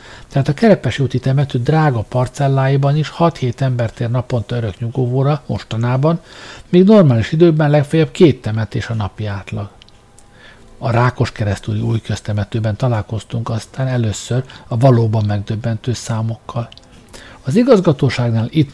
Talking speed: 120 wpm